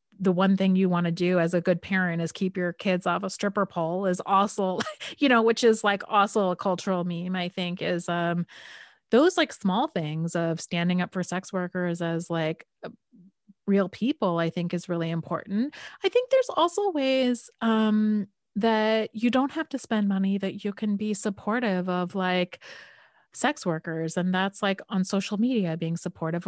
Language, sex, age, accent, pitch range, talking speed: English, female, 30-49, American, 180-225 Hz, 190 wpm